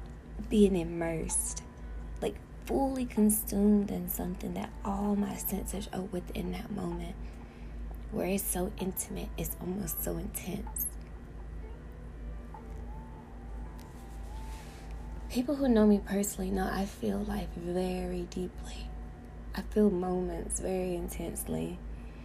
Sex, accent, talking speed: female, American, 105 wpm